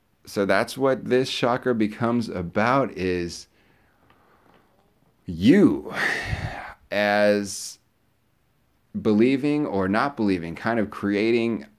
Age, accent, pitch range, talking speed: 30-49, American, 90-110 Hz, 85 wpm